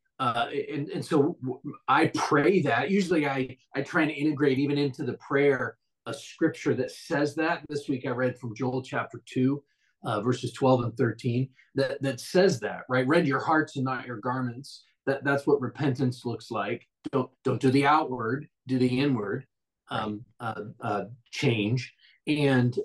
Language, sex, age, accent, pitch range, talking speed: English, male, 40-59, American, 125-150 Hz, 175 wpm